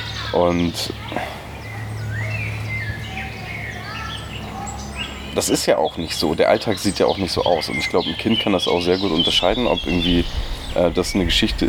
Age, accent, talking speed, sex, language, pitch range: 30-49, German, 165 wpm, male, German, 85-105 Hz